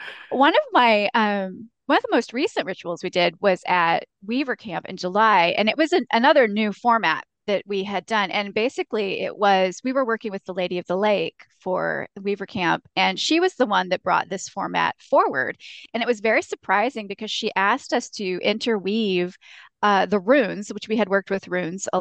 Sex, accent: female, American